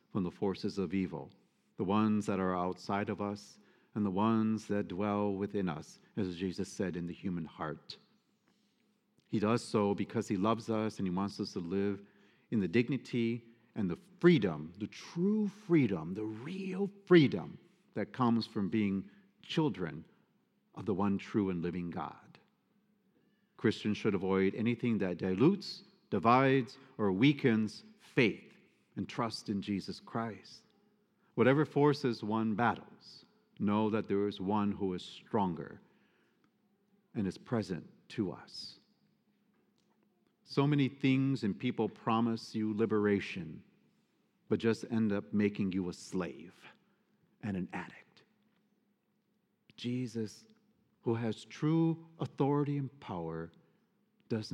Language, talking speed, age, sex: English, 135 wpm, 50-69, male